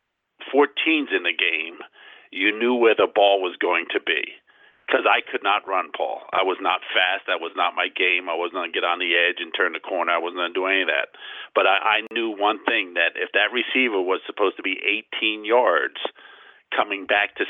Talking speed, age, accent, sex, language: 230 wpm, 50-69, American, male, English